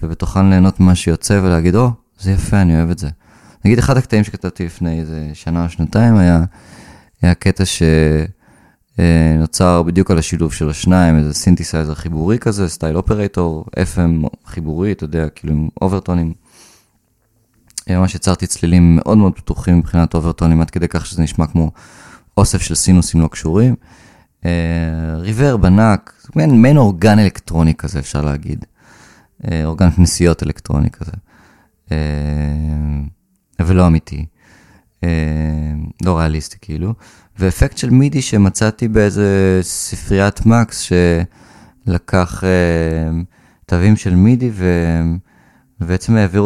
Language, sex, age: Hebrew, male, 20-39